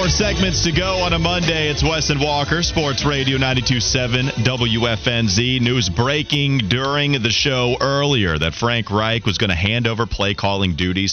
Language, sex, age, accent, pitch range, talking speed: English, male, 30-49, American, 95-125 Hz, 175 wpm